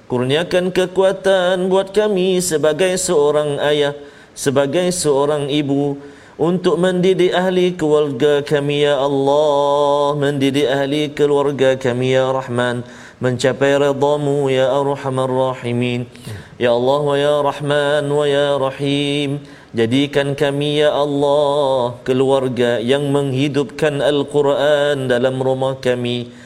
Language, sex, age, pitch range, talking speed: Malayalam, male, 40-59, 125-145 Hz, 105 wpm